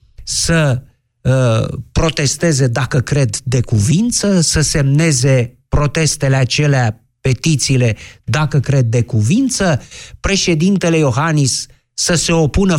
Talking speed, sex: 95 wpm, male